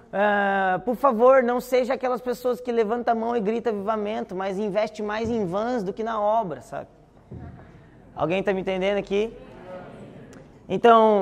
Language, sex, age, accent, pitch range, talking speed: Portuguese, male, 20-39, Brazilian, 195-250 Hz, 160 wpm